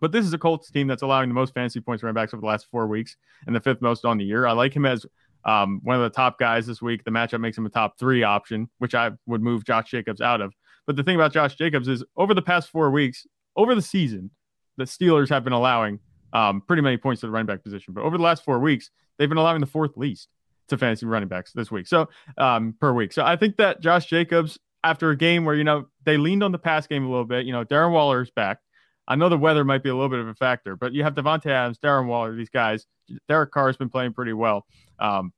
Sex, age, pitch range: male, 30-49, 115-155 Hz